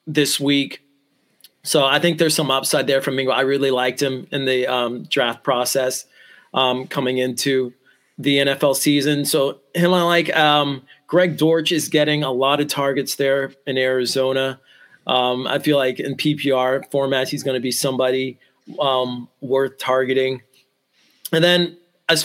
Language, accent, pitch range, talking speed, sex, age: English, American, 130-150 Hz, 160 wpm, male, 30-49